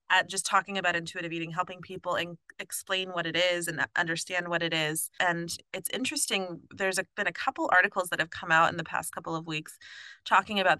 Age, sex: 20-39, female